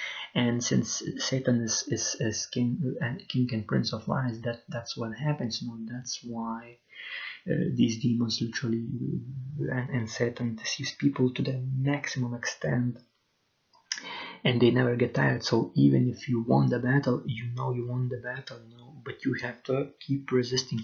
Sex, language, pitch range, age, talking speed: male, English, 115-130 Hz, 30-49, 155 wpm